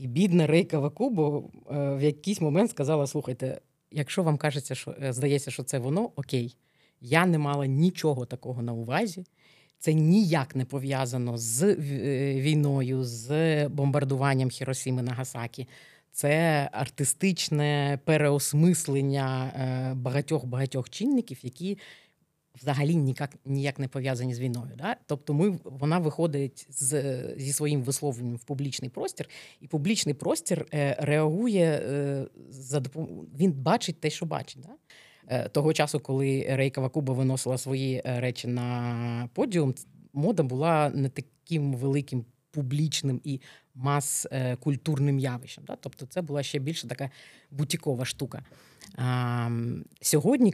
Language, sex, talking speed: Ukrainian, female, 120 wpm